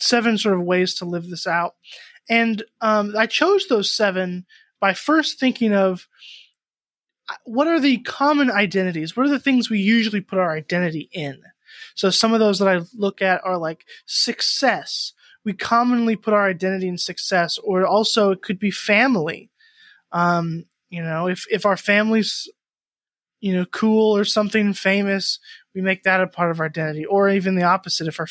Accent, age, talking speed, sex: American, 20-39, 180 wpm, male